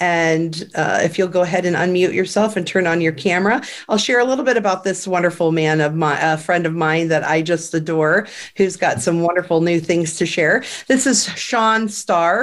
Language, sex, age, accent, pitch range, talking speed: English, female, 40-59, American, 165-195 Hz, 215 wpm